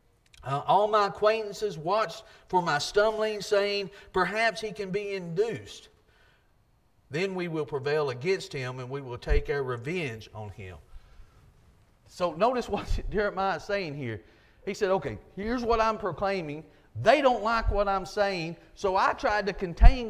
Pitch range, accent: 185-235 Hz, American